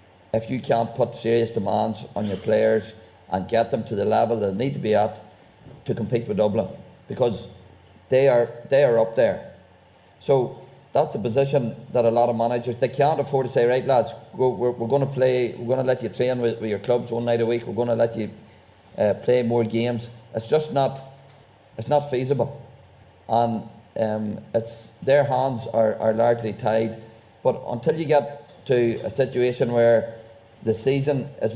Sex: male